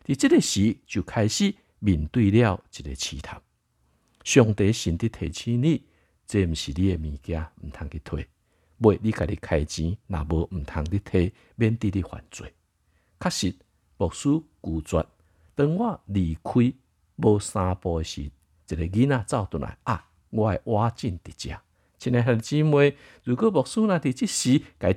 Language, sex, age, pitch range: Chinese, male, 60-79, 80-120 Hz